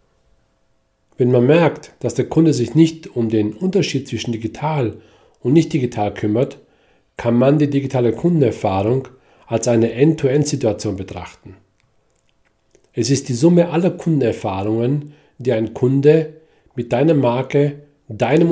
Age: 40-59